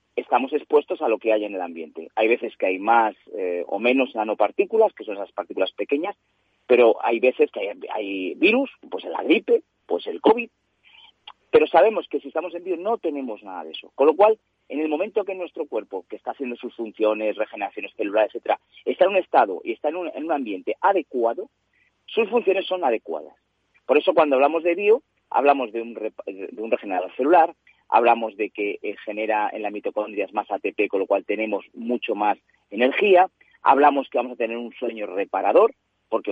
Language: Spanish